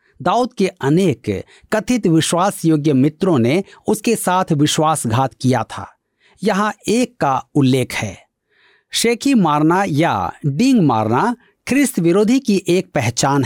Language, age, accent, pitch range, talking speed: Hindi, 50-69, native, 140-210 Hz, 120 wpm